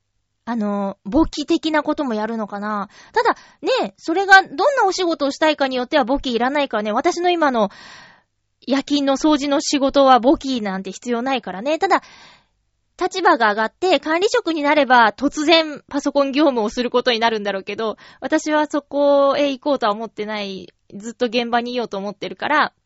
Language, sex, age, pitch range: Japanese, female, 20-39, 230-315 Hz